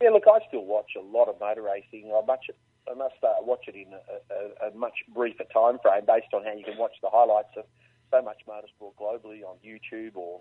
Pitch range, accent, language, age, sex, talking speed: 105-120 Hz, Australian, English, 40-59, male, 235 wpm